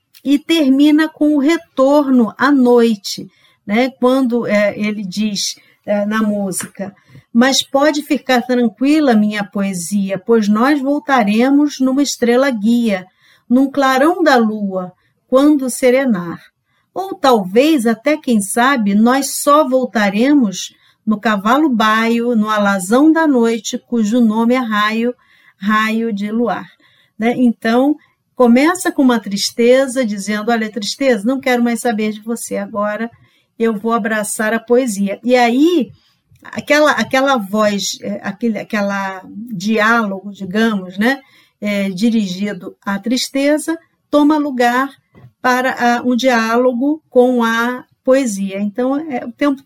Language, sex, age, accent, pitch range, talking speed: Portuguese, female, 50-69, Brazilian, 215-270 Hz, 115 wpm